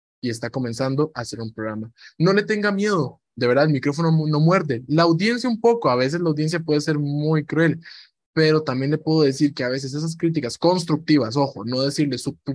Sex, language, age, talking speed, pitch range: male, Spanish, 20-39, 225 wpm, 135-165 Hz